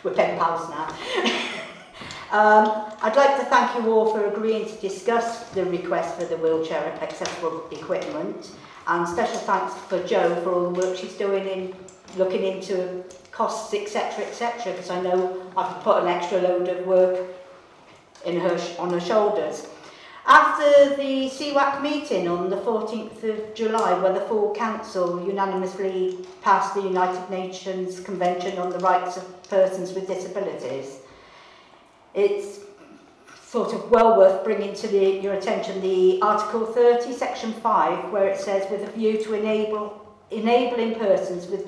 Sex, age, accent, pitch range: female, 50-69, British, 180-220 Hz